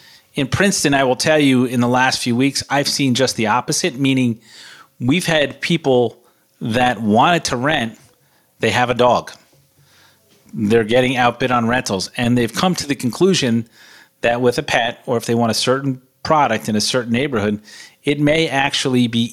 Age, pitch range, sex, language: 40-59, 110-135 Hz, male, English